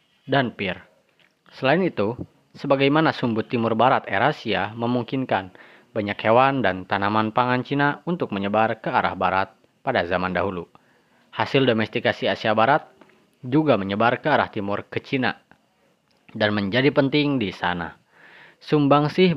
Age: 20-39